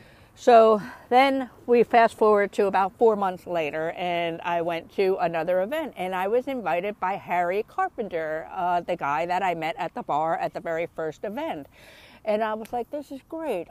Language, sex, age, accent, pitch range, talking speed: English, female, 50-69, American, 170-230 Hz, 195 wpm